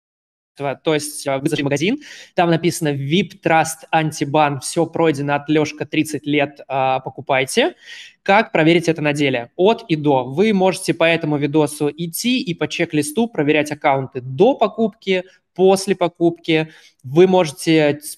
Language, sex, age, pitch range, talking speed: Russian, male, 20-39, 145-170 Hz, 140 wpm